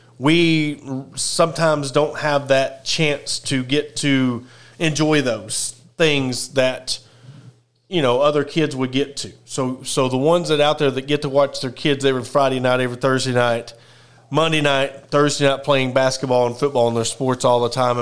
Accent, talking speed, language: American, 180 wpm, English